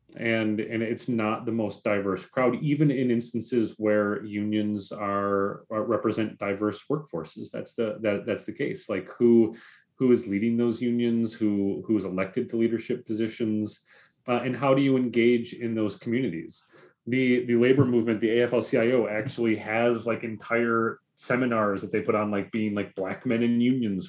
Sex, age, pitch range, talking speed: male, 30-49, 105-125 Hz, 175 wpm